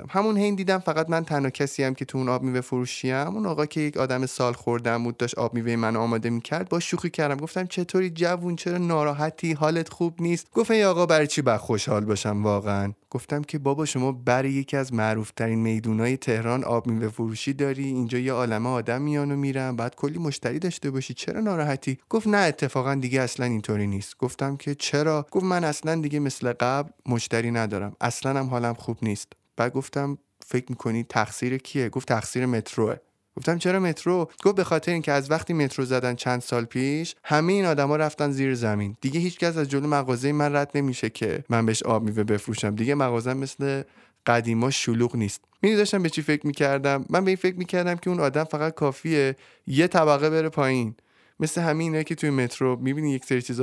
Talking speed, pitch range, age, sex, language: 190 wpm, 120-155 Hz, 20-39, male, Persian